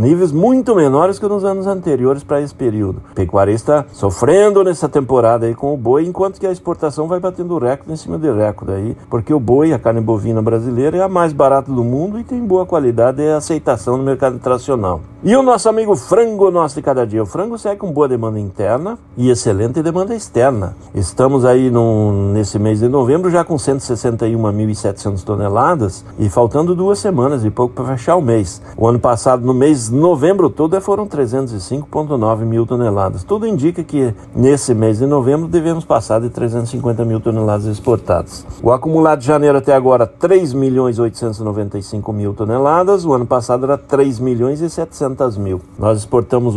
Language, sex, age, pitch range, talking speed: Portuguese, male, 60-79, 110-160 Hz, 180 wpm